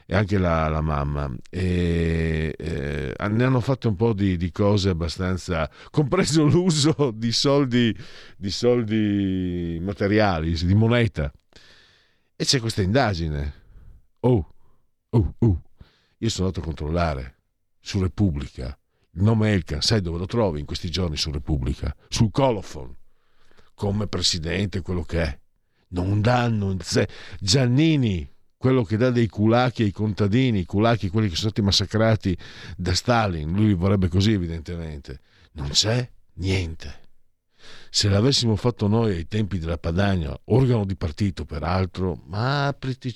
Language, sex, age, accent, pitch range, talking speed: Italian, male, 50-69, native, 85-115 Hz, 140 wpm